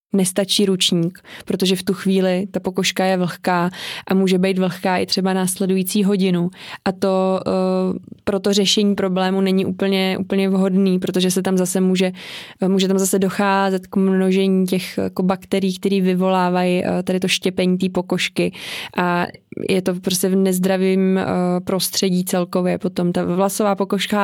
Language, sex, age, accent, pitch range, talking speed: Czech, female, 20-39, native, 185-200 Hz, 160 wpm